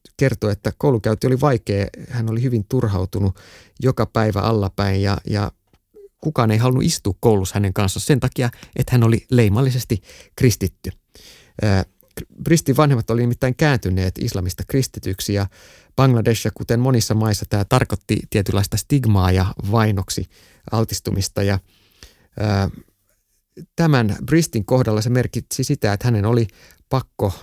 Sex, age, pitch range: male, 30-49, 100-120 Hz